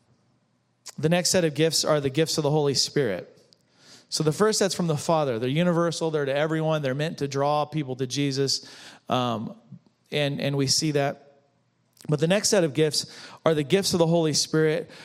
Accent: American